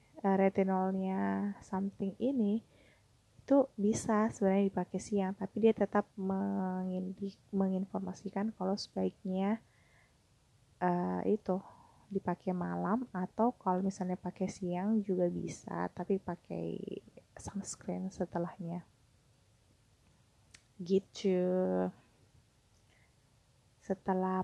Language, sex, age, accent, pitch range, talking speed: Indonesian, female, 20-39, native, 130-195 Hz, 80 wpm